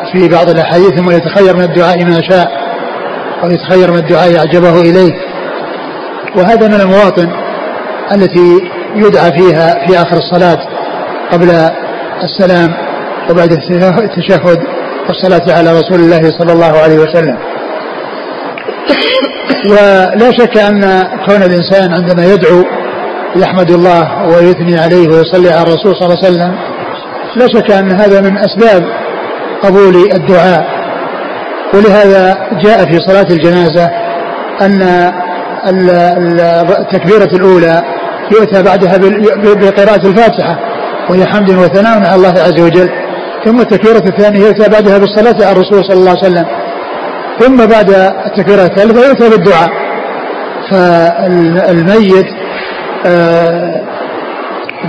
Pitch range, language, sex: 175-200 Hz, Arabic, male